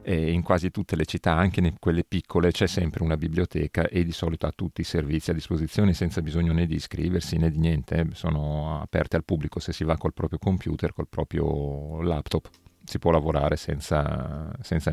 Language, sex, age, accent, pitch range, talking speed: Italian, male, 40-59, native, 75-90 Hz, 195 wpm